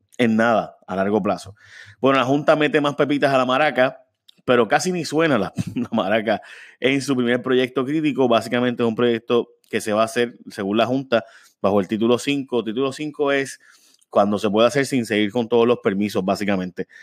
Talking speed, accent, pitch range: 195 wpm, Venezuelan, 110-130 Hz